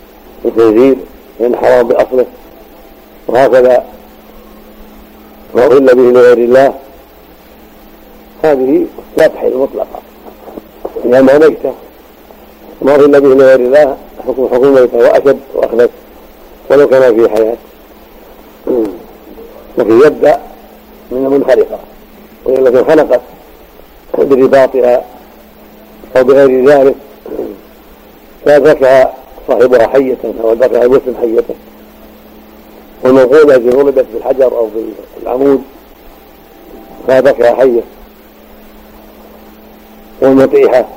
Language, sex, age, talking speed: Arabic, male, 50-69, 60 wpm